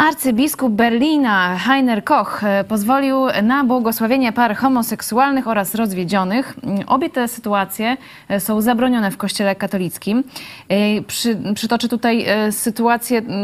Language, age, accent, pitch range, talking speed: Polish, 20-39, native, 200-255 Hz, 100 wpm